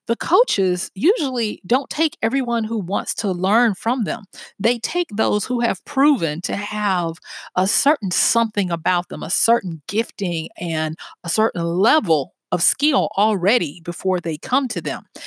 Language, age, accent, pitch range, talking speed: English, 40-59, American, 180-240 Hz, 155 wpm